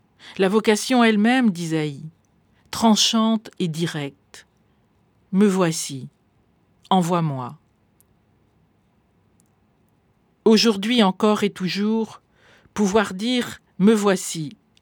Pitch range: 160-210 Hz